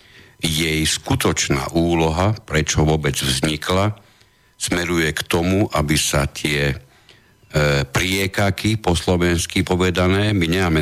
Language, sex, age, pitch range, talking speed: Slovak, male, 50-69, 80-110 Hz, 105 wpm